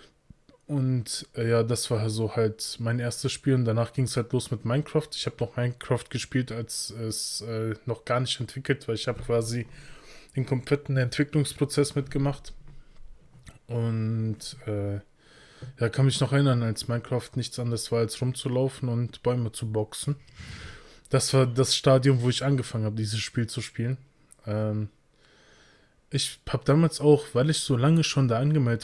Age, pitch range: 20-39, 115-140 Hz